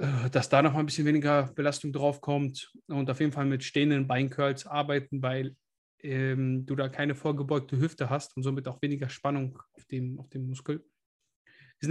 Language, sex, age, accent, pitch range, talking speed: German, male, 20-39, German, 140-170 Hz, 180 wpm